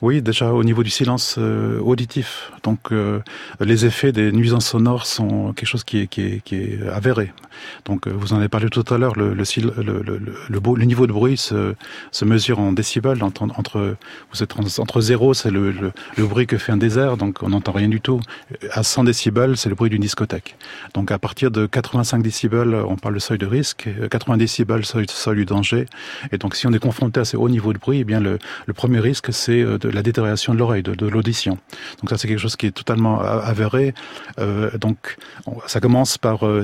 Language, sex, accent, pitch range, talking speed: French, male, French, 105-120 Hz, 225 wpm